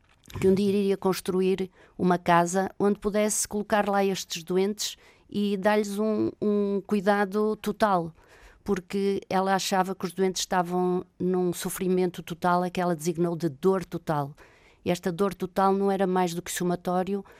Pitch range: 175-200 Hz